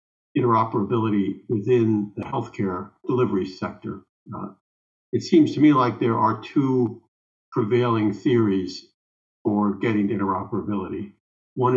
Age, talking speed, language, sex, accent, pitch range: 50-69, 105 wpm, English, male, American, 100-120 Hz